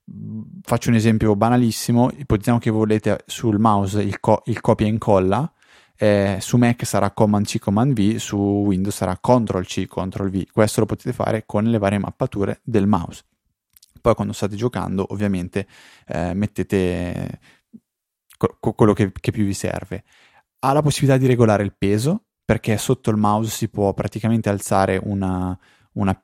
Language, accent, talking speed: Italian, native, 165 wpm